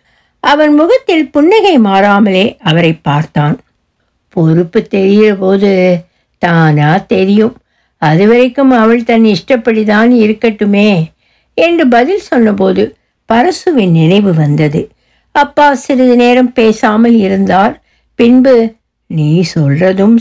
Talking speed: 85 wpm